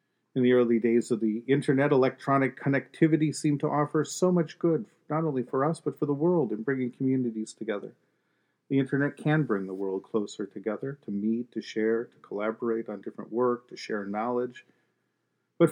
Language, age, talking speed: English, 40-59, 185 wpm